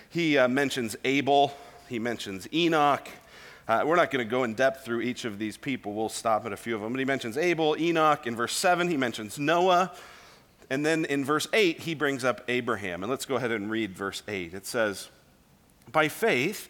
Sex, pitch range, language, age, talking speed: male, 125-165 Hz, English, 40-59, 210 wpm